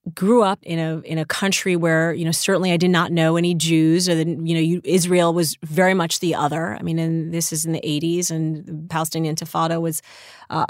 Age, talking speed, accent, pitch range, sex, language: 30-49, 235 wpm, American, 165-220 Hz, female, English